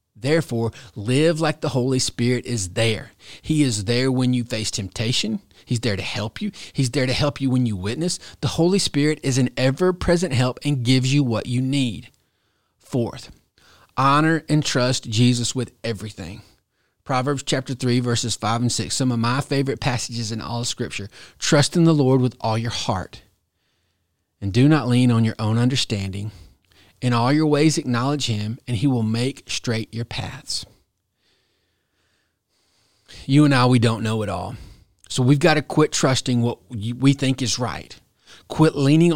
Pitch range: 110-135 Hz